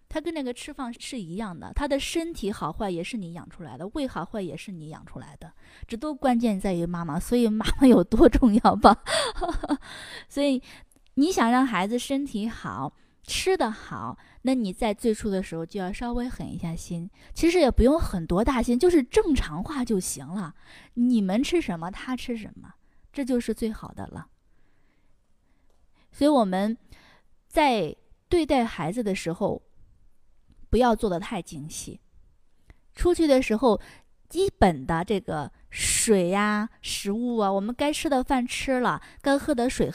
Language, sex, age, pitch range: Chinese, female, 20-39, 185-260 Hz